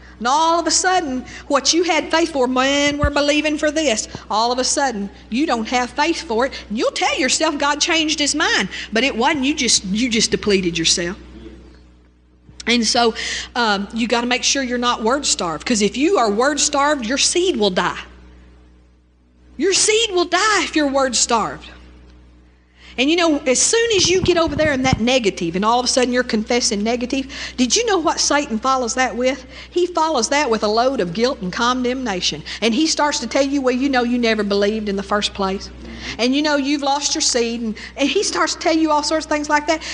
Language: English